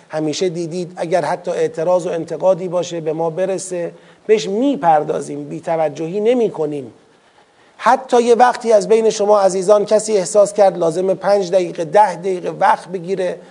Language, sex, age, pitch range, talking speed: Persian, male, 40-59, 180-220 Hz, 150 wpm